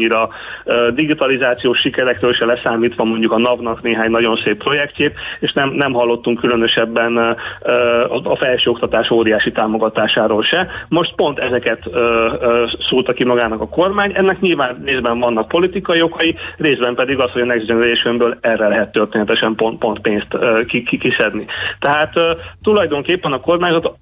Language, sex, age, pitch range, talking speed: Hungarian, male, 40-59, 115-145 Hz, 135 wpm